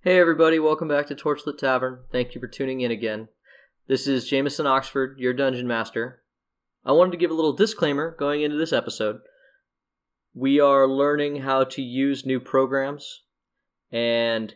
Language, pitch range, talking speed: English, 110-135 Hz, 165 wpm